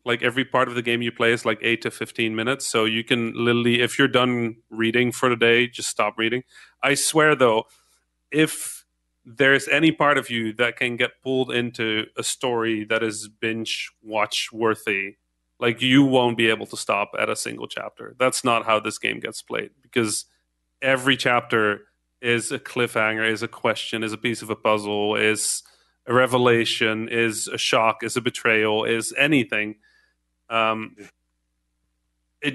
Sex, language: male, English